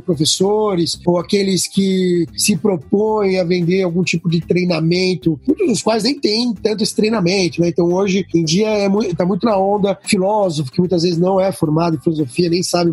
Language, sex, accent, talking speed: Portuguese, male, Brazilian, 195 wpm